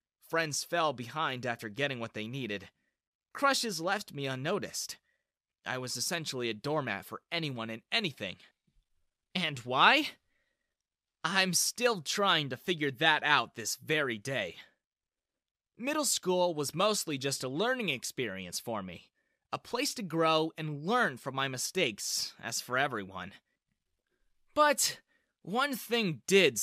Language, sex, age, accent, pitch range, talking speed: English, male, 20-39, American, 125-205 Hz, 135 wpm